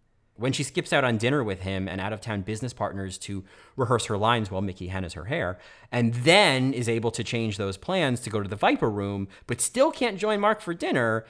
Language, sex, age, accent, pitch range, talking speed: English, male, 30-49, American, 100-155 Hz, 225 wpm